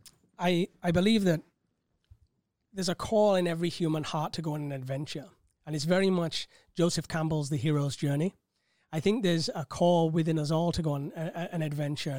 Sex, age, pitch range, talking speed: male, 30-49, 150-180 Hz, 195 wpm